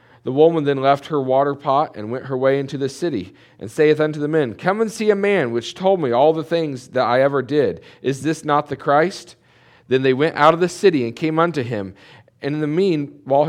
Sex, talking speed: male, 245 wpm